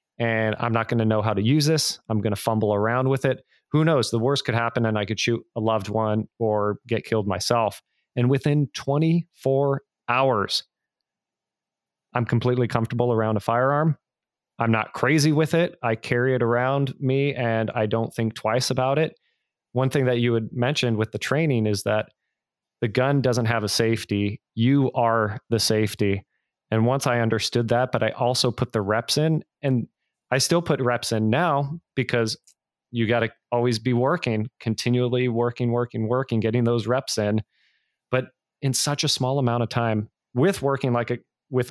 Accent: American